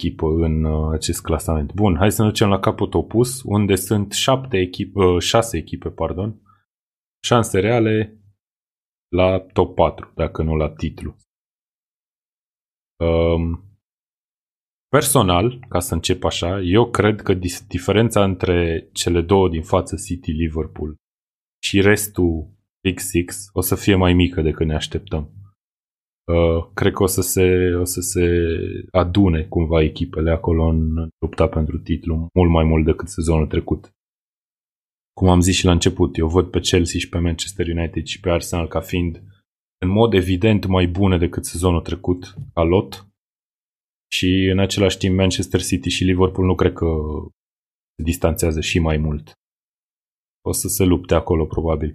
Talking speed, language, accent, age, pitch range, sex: 145 wpm, Romanian, native, 20-39, 80-100 Hz, male